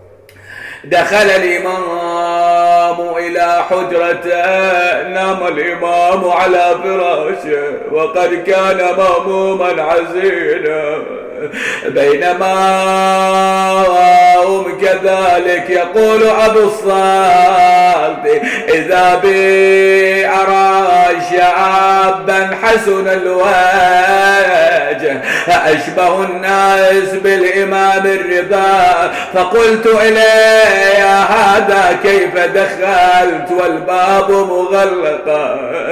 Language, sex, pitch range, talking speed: Arabic, male, 180-220 Hz, 60 wpm